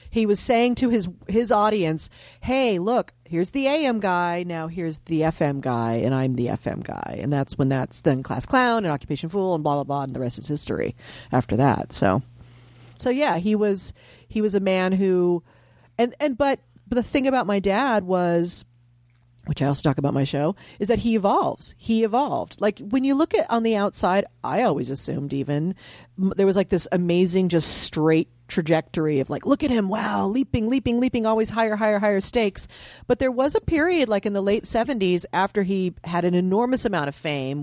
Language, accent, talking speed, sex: English, American, 205 wpm, female